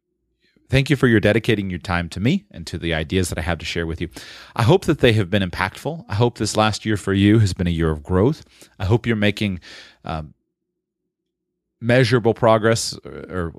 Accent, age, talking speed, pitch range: American, 30-49, 215 wpm, 95-125 Hz